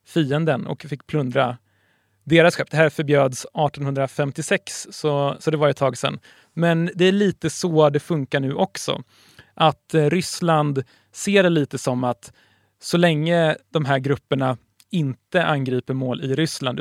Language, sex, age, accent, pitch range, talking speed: Swedish, male, 30-49, native, 130-155 Hz, 155 wpm